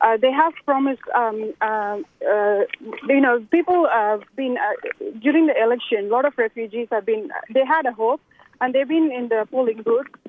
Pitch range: 230-275 Hz